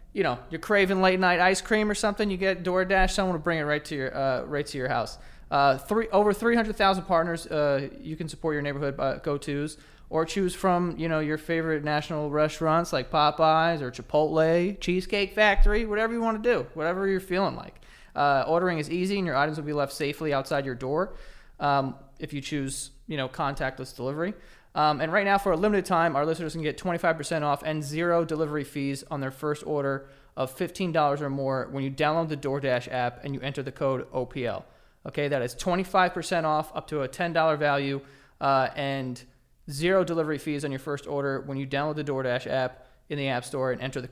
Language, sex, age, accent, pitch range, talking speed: English, male, 20-39, American, 140-180 Hz, 210 wpm